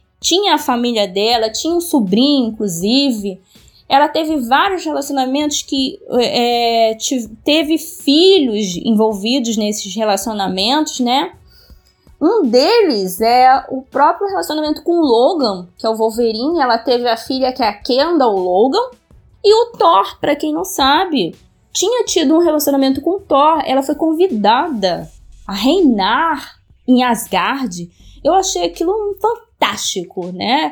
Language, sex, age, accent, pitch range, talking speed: Portuguese, female, 20-39, Brazilian, 215-315 Hz, 140 wpm